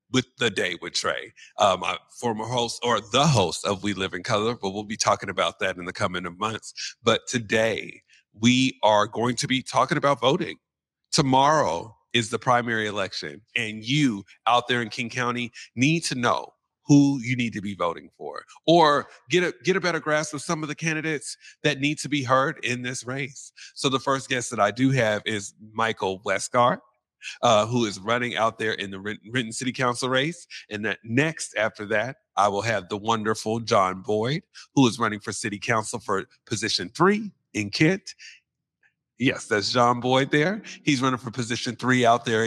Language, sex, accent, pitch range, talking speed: English, male, American, 110-140 Hz, 195 wpm